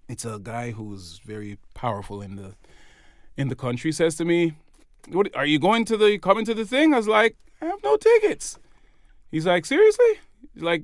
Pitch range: 120-180 Hz